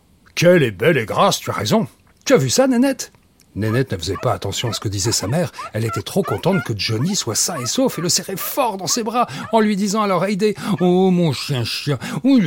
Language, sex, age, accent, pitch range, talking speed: French, male, 60-79, French, 115-185 Hz, 255 wpm